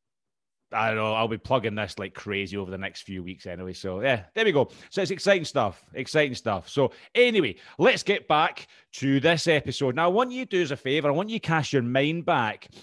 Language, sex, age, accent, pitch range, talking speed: English, male, 30-49, British, 105-135 Hz, 240 wpm